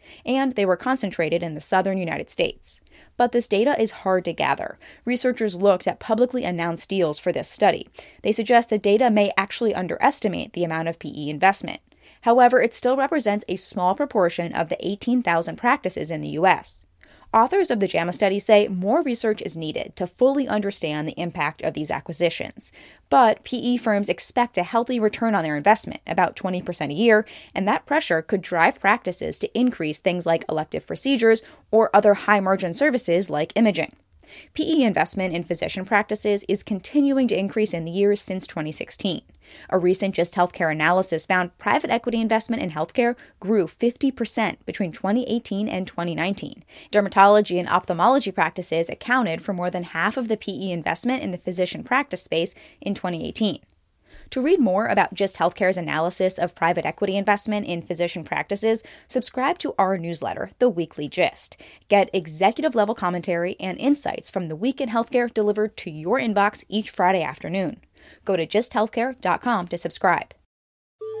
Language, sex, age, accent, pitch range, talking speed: English, female, 20-39, American, 175-230 Hz, 165 wpm